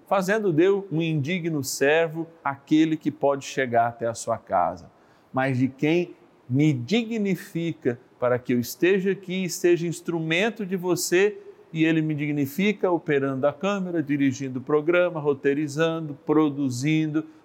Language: Portuguese